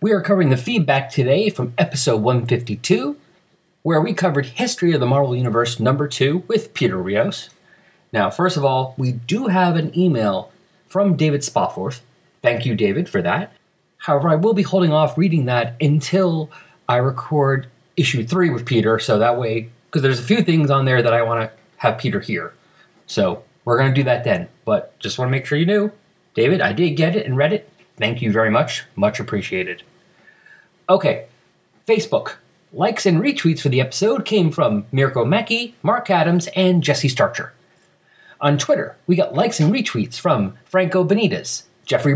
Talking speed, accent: 180 wpm, American